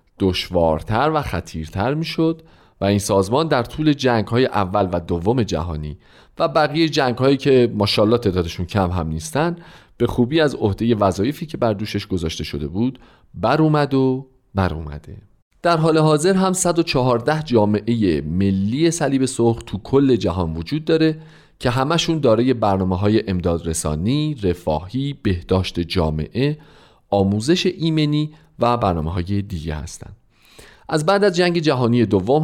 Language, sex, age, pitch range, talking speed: Persian, male, 40-59, 95-145 Hz, 145 wpm